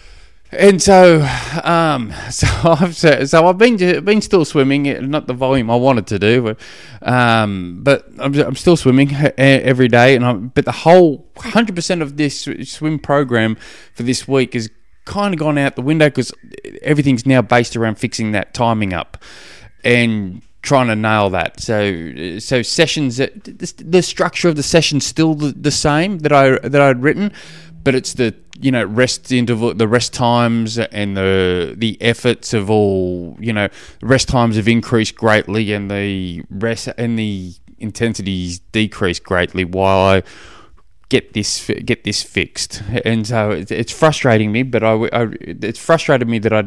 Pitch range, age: 105-140 Hz, 20-39